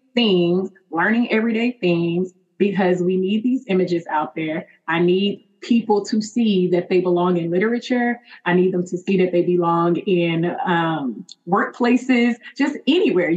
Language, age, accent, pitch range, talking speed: English, 20-39, American, 170-205 Hz, 155 wpm